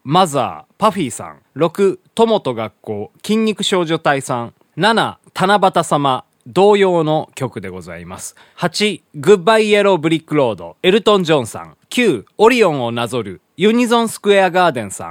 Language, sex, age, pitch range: Japanese, male, 20-39, 125-205 Hz